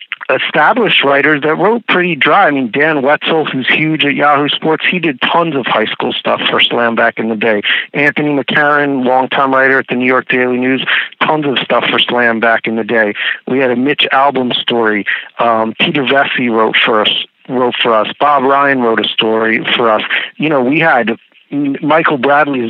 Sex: male